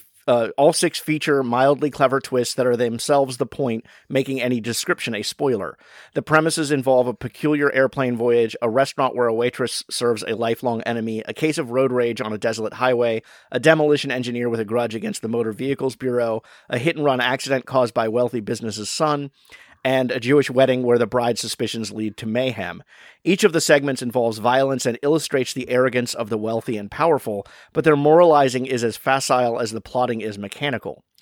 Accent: American